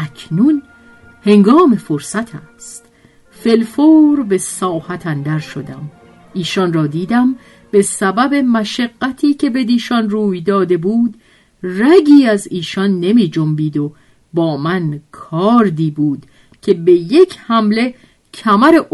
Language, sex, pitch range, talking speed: Persian, female, 155-235 Hz, 110 wpm